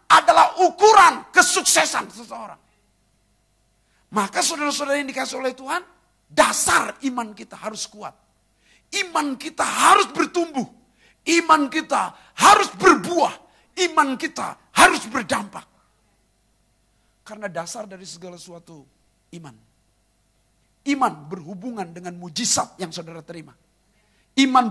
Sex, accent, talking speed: male, native, 100 wpm